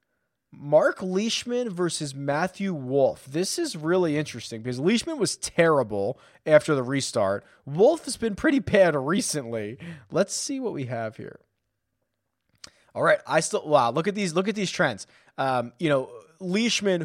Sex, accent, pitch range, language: male, American, 125-170 Hz, English